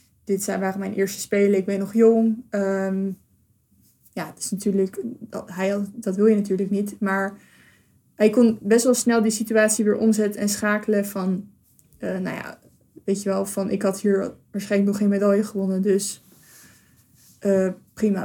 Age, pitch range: 20-39, 195-215 Hz